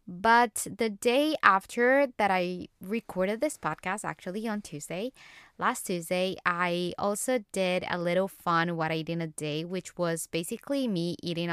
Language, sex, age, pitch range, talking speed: English, female, 20-39, 170-220 Hz, 160 wpm